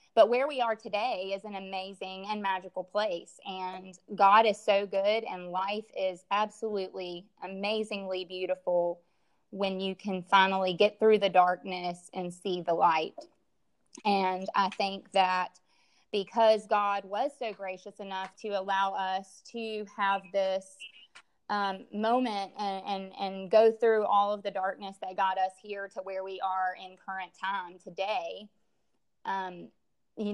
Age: 20-39